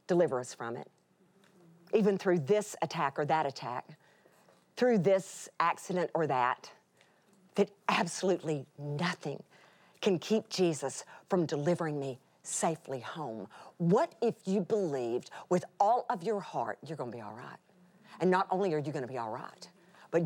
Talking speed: 155 wpm